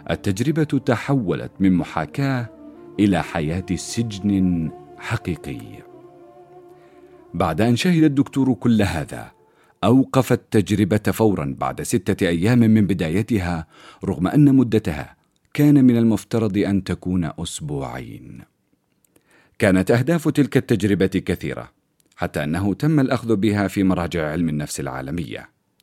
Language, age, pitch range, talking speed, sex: Arabic, 50-69, 90-130 Hz, 105 wpm, male